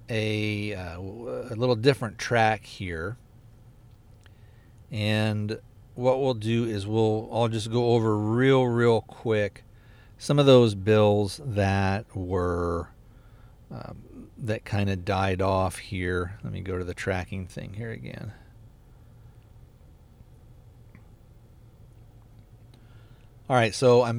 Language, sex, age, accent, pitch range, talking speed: English, male, 50-69, American, 100-115 Hz, 115 wpm